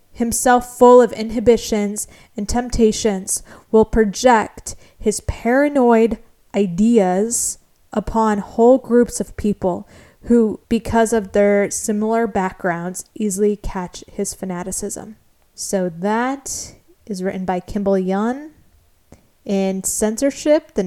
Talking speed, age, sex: 105 wpm, 10-29, female